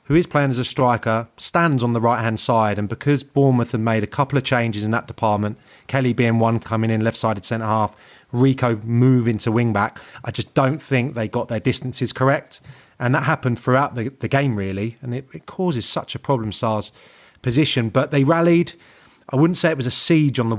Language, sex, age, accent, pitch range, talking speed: English, male, 30-49, British, 115-135 Hz, 205 wpm